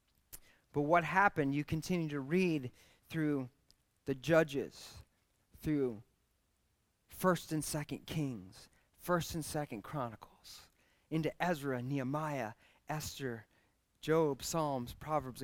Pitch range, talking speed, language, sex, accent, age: 140-175 Hz, 100 wpm, English, male, American, 30-49